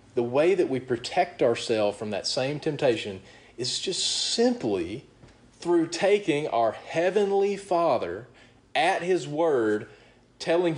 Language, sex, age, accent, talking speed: English, male, 30-49, American, 120 wpm